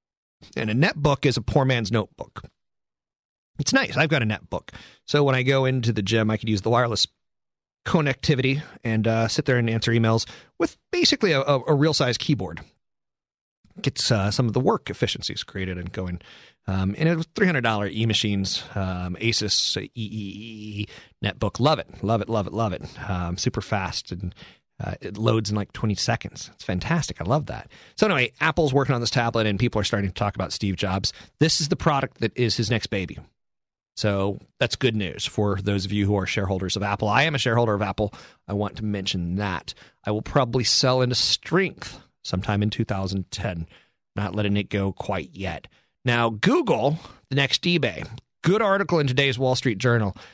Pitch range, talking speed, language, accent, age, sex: 100-130 Hz, 195 wpm, English, American, 30-49, male